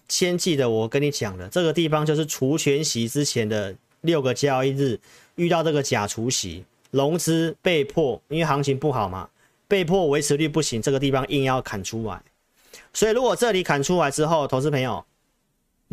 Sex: male